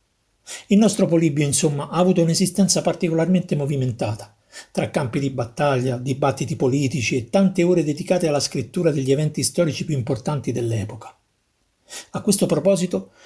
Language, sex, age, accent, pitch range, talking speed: Italian, male, 50-69, native, 140-185 Hz, 135 wpm